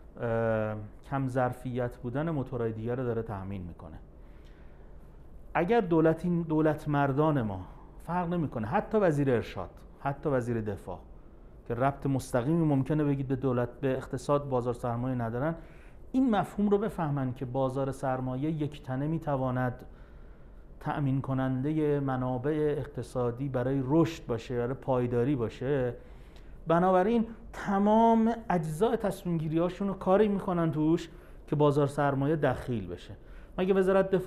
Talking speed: 125 wpm